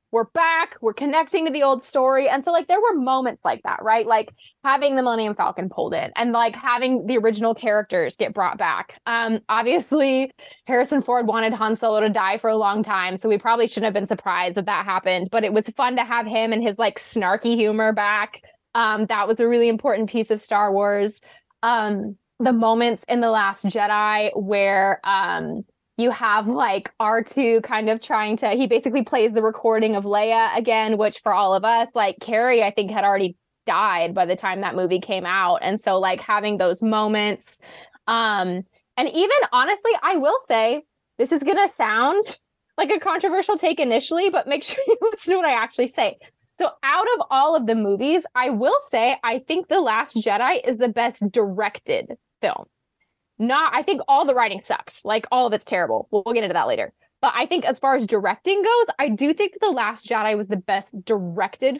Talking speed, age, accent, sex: 205 wpm, 20-39, American, female